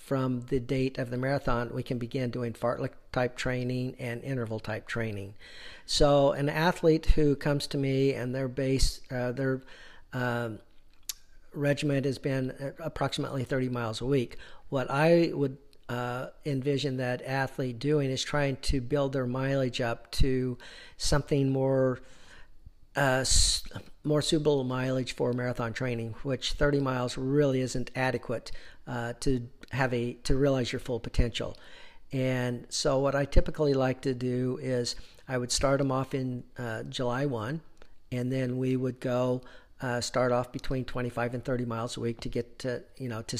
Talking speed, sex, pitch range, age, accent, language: 160 wpm, male, 125-140 Hz, 50-69, American, English